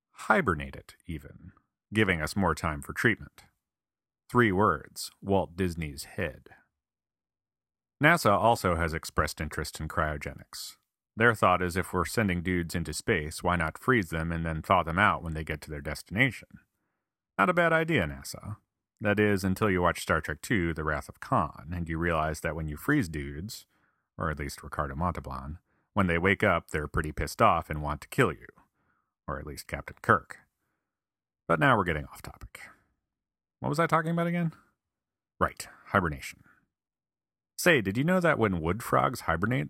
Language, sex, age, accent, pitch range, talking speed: English, male, 40-59, American, 80-105 Hz, 175 wpm